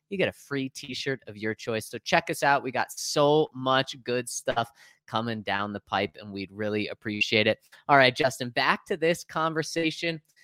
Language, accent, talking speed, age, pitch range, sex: English, American, 195 wpm, 30-49, 135-190 Hz, male